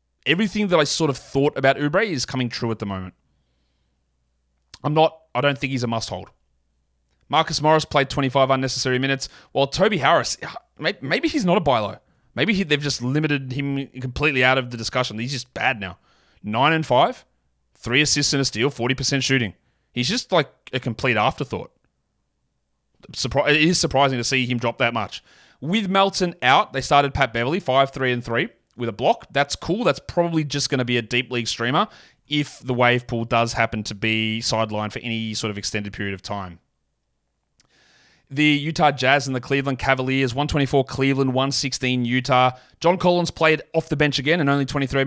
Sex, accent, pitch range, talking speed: male, Australian, 115-145 Hz, 190 wpm